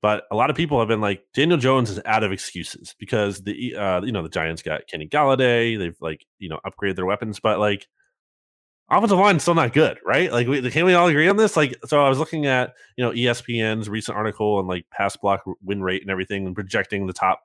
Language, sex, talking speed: English, male, 245 wpm